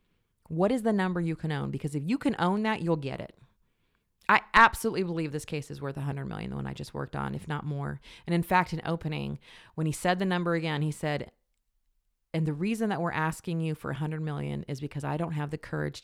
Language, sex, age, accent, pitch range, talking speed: English, female, 40-59, American, 145-180 Hz, 240 wpm